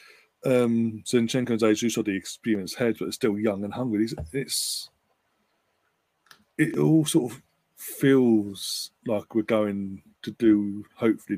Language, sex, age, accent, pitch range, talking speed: English, male, 30-49, British, 105-120 Hz, 155 wpm